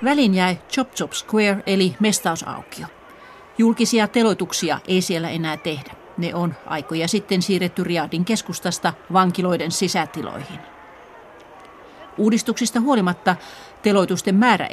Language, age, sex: Finnish, 40-59, female